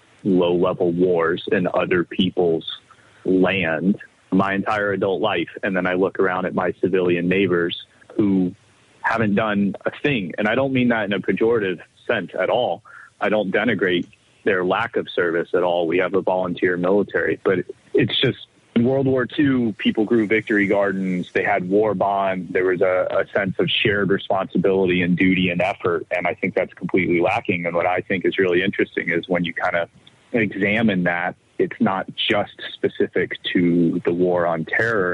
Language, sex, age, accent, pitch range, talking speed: English, male, 30-49, American, 90-110 Hz, 180 wpm